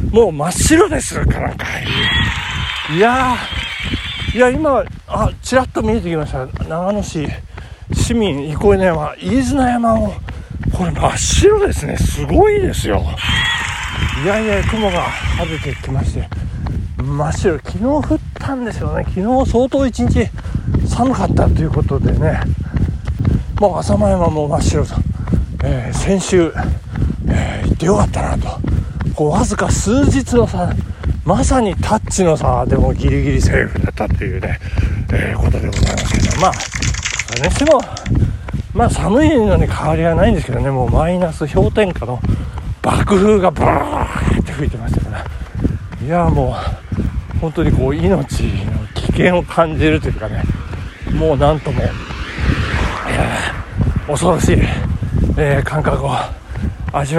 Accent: native